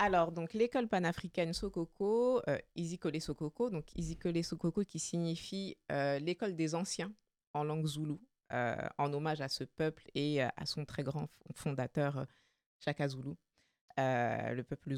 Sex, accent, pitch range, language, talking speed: female, French, 150-190 Hz, French, 145 wpm